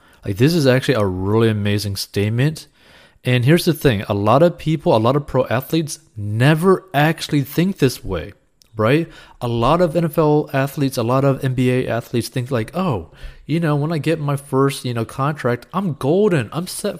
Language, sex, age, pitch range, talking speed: English, male, 30-49, 105-145 Hz, 190 wpm